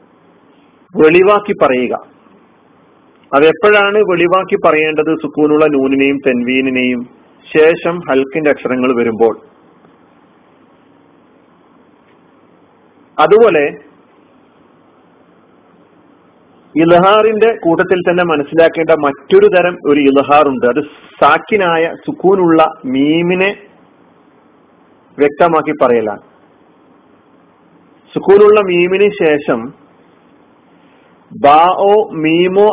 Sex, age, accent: male, 40-59, native